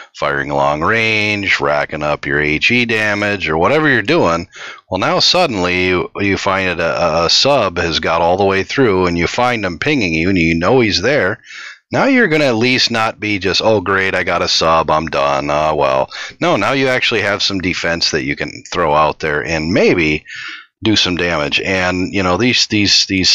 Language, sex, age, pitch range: English, male, 40-59, 80-105 Hz